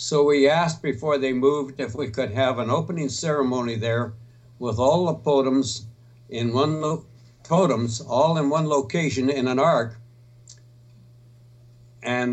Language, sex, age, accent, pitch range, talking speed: English, male, 60-79, American, 120-140 Hz, 130 wpm